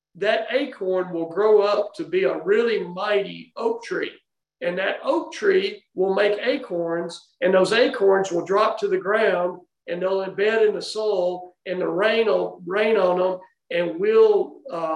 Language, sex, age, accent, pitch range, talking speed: English, male, 50-69, American, 180-255 Hz, 175 wpm